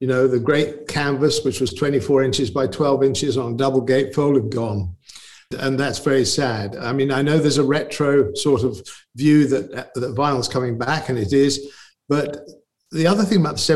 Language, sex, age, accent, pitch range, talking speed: English, male, 50-69, British, 125-150 Hz, 200 wpm